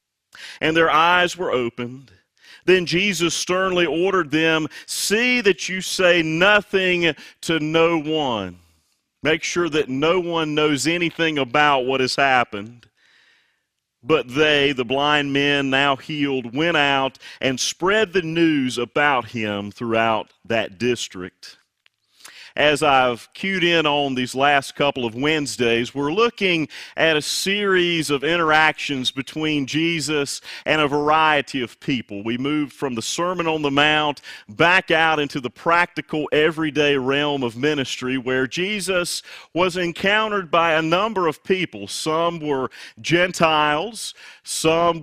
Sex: male